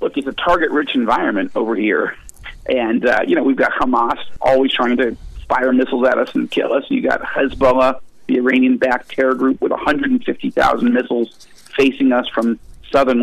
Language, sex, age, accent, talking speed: English, male, 50-69, American, 170 wpm